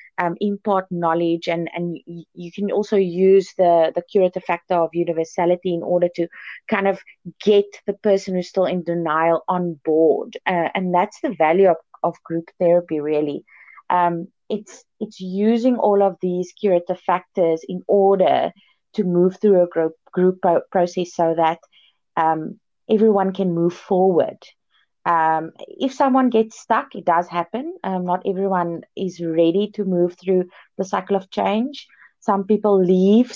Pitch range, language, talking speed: 170-205 Hz, English, 155 wpm